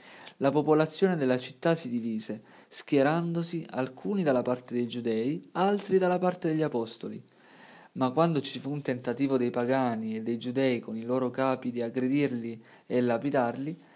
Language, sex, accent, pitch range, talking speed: Italian, male, native, 120-160 Hz, 155 wpm